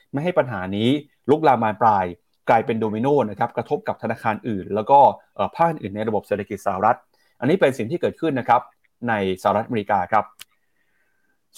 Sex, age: male, 30-49